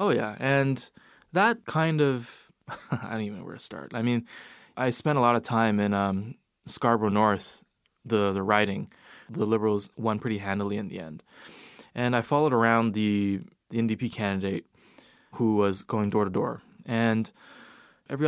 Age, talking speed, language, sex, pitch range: 20-39, 170 wpm, English, male, 110-135 Hz